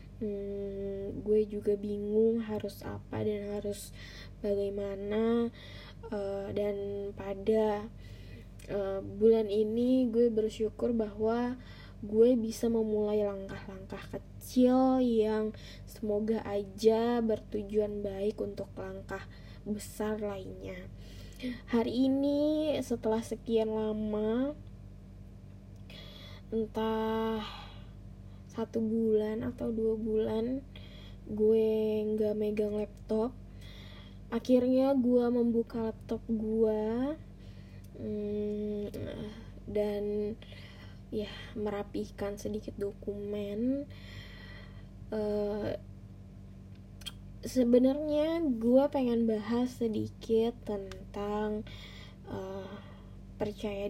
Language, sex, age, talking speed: Indonesian, female, 10-29, 70 wpm